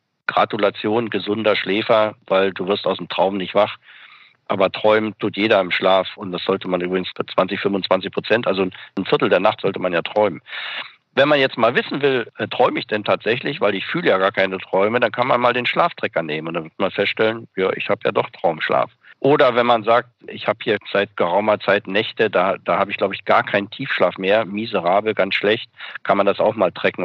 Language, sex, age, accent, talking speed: German, male, 50-69, German, 220 wpm